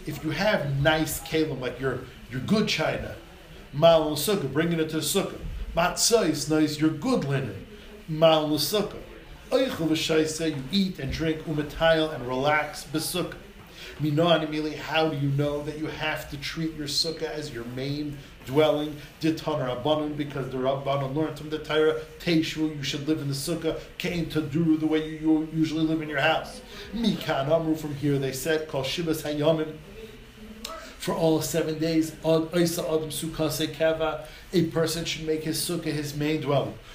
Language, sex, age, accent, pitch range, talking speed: English, male, 40-59, American, 150-165 Hz, 155 wpm